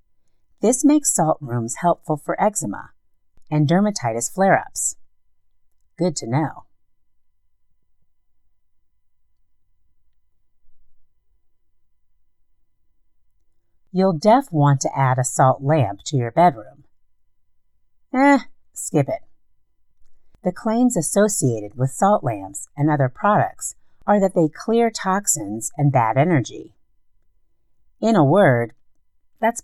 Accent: American